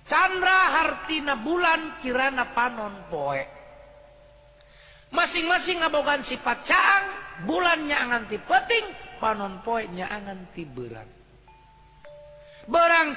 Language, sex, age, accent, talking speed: Indonesian, male, 50-69, native, 80 wpm